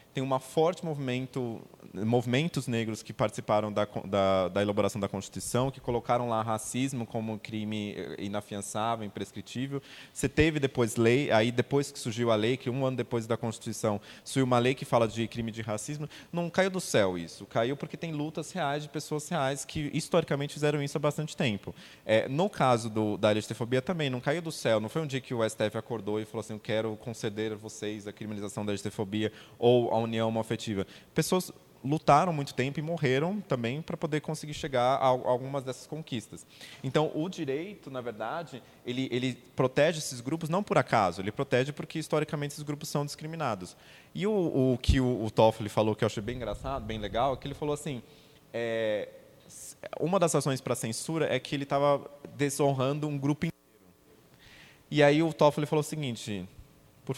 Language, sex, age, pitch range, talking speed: Portuguese, male, 20-39, 110-150 Hz, 190 wpm